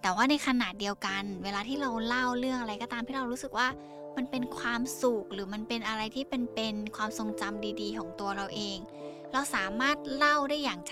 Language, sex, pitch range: Thai, female, 200-245 Hz